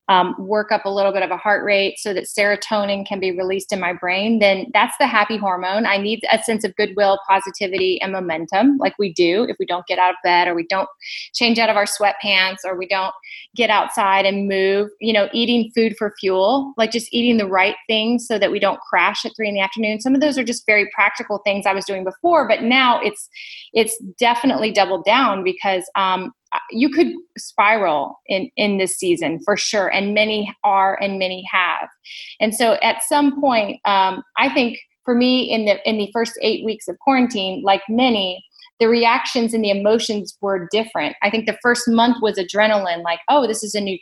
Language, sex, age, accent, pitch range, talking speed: English, female, 20-39, American, 195-230 Hz, 215 wpm